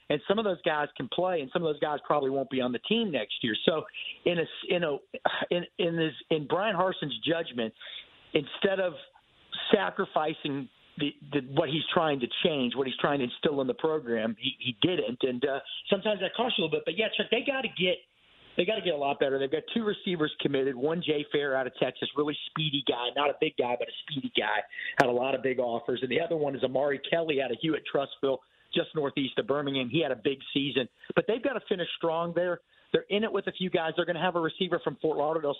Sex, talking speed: male, 245 wpm